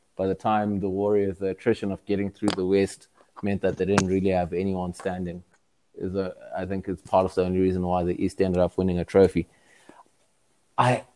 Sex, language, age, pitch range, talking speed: male, English, 20-39, 95-105 Hz, 200 wpm